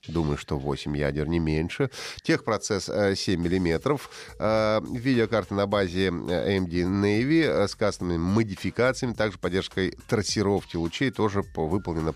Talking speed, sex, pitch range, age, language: 115 wpm, male, 80-115 Hz, 30-49, Russian